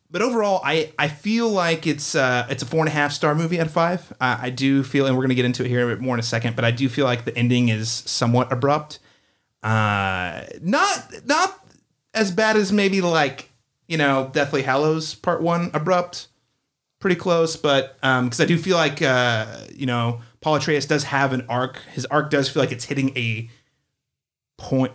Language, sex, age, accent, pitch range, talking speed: English, male, 30-49, American, 120-150 Hz, 215 wpm